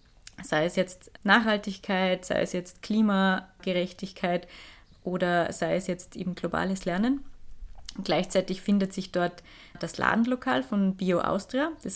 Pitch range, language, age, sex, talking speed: 185-215 Hz, German, 20-39, female, 125 wpm